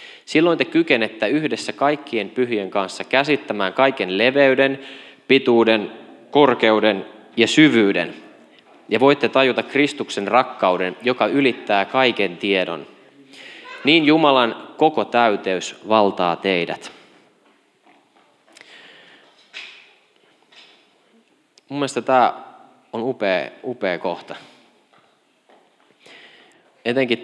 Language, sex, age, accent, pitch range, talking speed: Finnish, male, 20-39, native, 95-130 Hz, 80 wpm